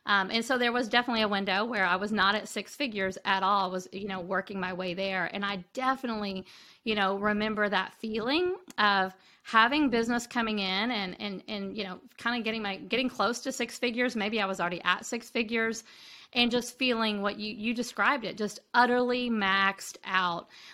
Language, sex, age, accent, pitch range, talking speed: English, female, 40-59, American, 200-245 Hz, 205 wpm